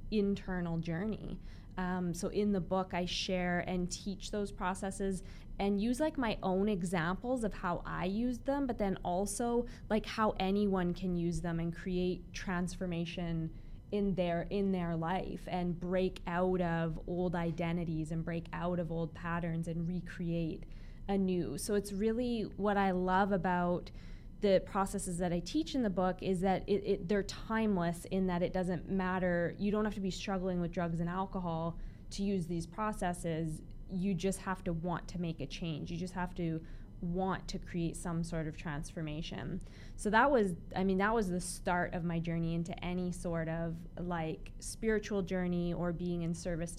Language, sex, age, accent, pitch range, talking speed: English, female, 20-39, American, 170-195 Hz, 180 wpm